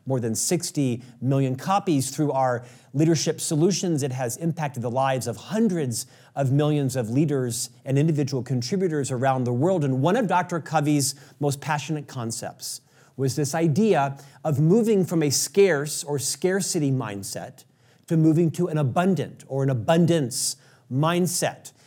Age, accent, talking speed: 40-59, American, 150 wpm